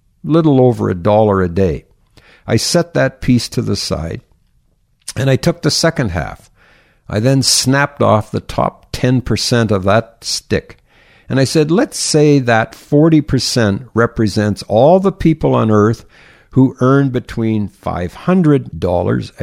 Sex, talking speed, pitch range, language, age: male, 140 wpm, 105-140 Hz, English, 60-79